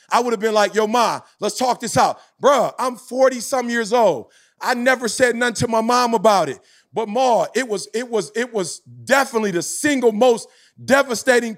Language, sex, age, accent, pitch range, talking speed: English, male, 30-49, American, 195-245 Hz, 200 wpm